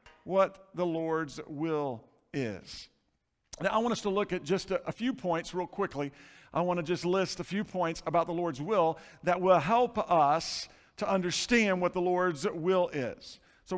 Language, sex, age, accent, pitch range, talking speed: English, male, 50-69, American, 145-190 Hz, 185 wpm